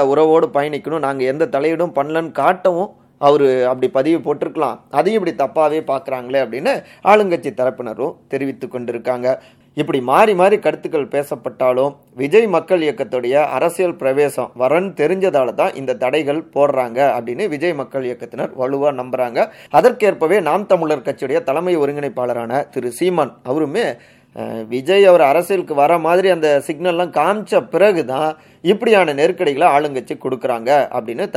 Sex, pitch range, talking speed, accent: male, 125-160 Hz, 65 wpm, native